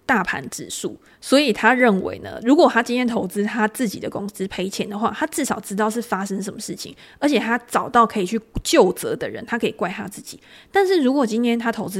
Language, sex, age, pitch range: Chinese, female, 20-39, 200-235 Hz